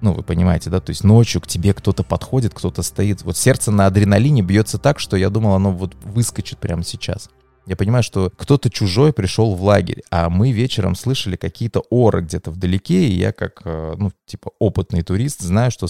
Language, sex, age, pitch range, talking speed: Russian, male, 20-39, 95-115 Hz, 195 wpm